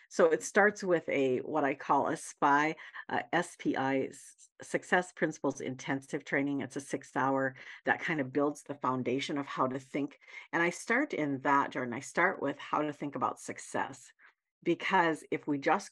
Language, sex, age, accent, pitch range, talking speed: English, female, 50-69, American, 135-165 Hz, 180 wpm